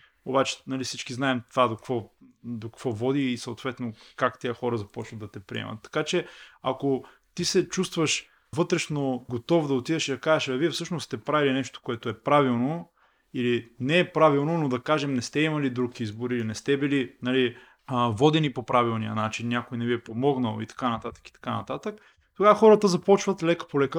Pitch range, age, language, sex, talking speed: 120-170 Hz, 20-39, Bulgarian, male, 195 wpm